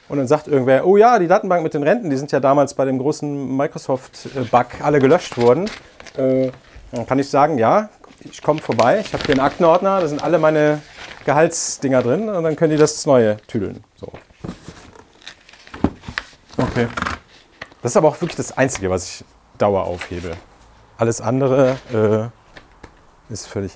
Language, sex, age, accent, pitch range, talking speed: German, male, 40-59, German, 105-145 Hz, 165 wpm